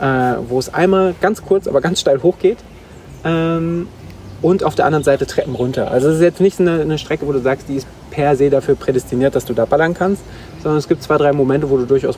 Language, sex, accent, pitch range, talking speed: German, male, German, 125-155 Hz, 235 wpm